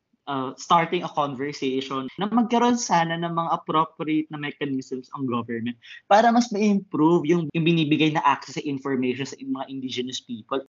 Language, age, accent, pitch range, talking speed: Filipino, 20-39, native, 140-180 Hz, 155 wpm